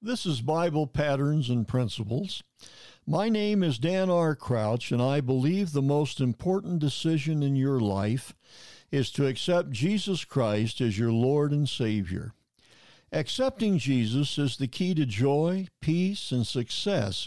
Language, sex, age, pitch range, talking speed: English, male, 60-79, 125-175 Hz, 145 wpm